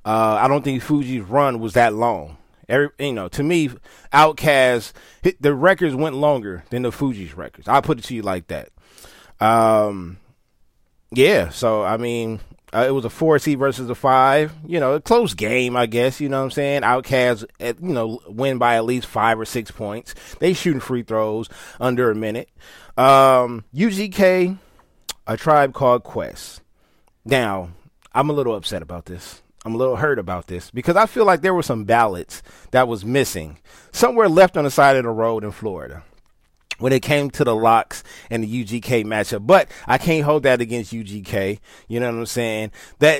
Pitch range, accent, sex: 110-145 Hz, American, male